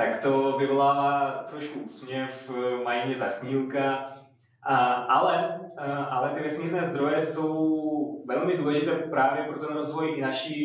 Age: 20-39